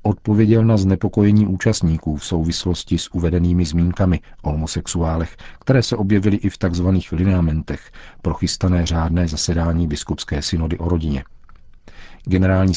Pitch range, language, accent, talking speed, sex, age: 85-100 Hz, Czech, native, 125 wpm, male, 50-69